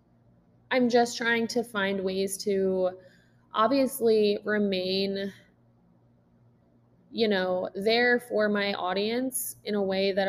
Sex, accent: female, American